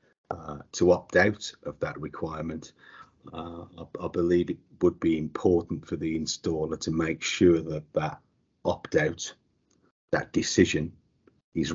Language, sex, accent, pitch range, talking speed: English, male, British, 80-95 Hz, 145 wpm